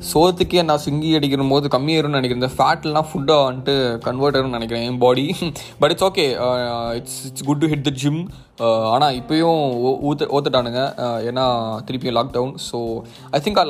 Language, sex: Tamil, male